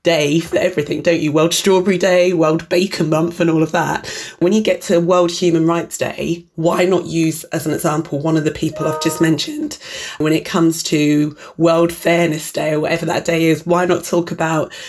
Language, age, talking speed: English, 20-39, 210 wpm